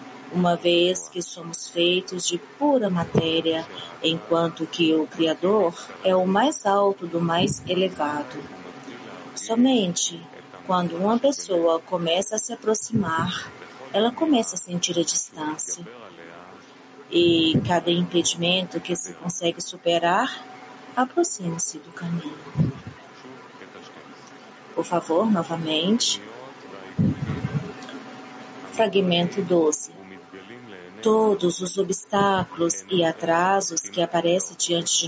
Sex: female